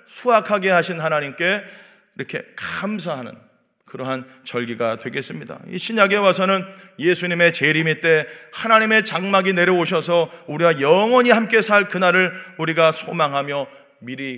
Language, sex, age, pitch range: Korean, male, 40-59, 145-215 Hz